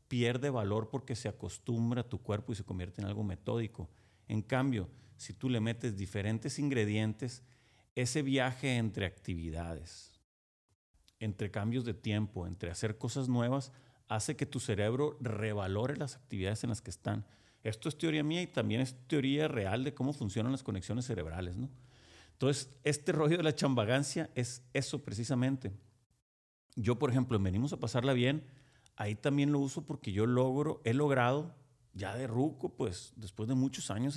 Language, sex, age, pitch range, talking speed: Spanish, male, 40-59, 105-130 Hz, 165 wpm